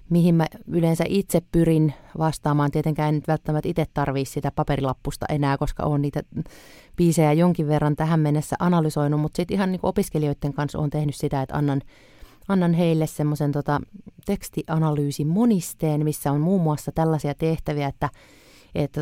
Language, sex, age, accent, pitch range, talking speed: Finnish, female, 30-49, native, 145-165 Hz, 150 wpm